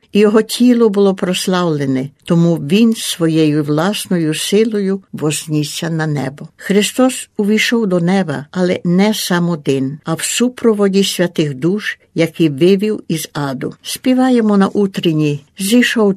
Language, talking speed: Ukrainian, 120 wpm